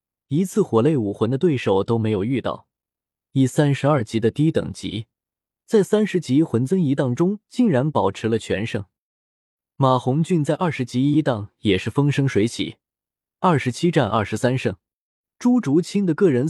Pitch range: 110-165 Hz